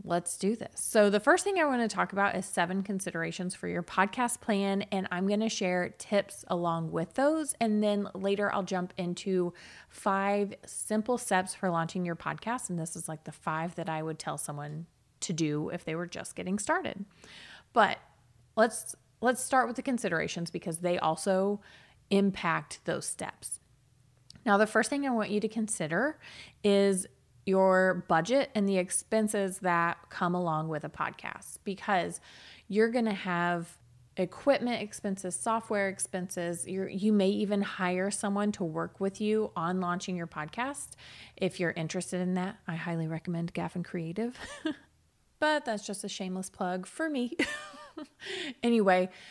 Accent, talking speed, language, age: American, 165 wpm, English, 30-49